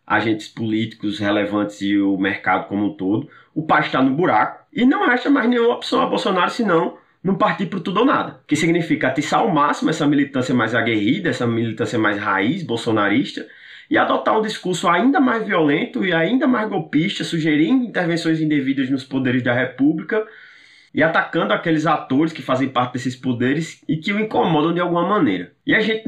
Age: 20-39